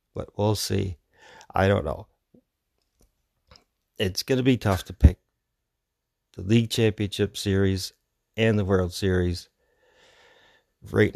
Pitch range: 90-110 Hz